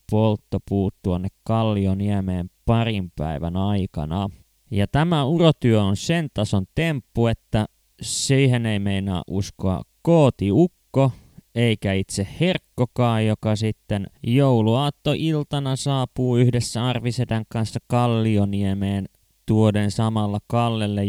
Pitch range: 100-130 Hz